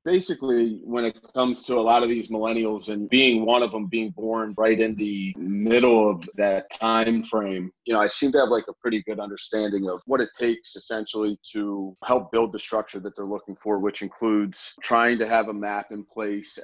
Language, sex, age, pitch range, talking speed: English, male, 30-49, 100-115 Hz, 215 wpm